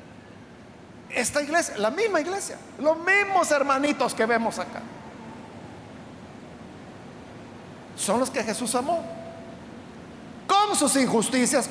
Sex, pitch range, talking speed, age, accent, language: male, 220-295 Hz, 95 wpm, 50-69, Mexican, Spanish